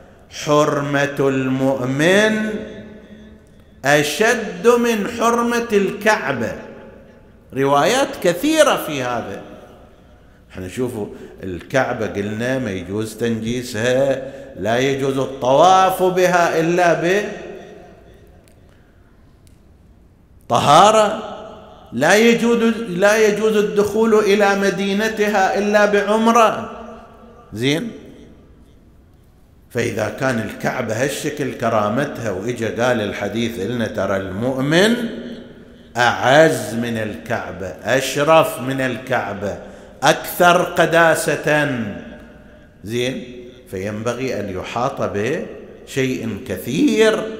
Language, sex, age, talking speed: Arabic, male, 50-69, 75 wpm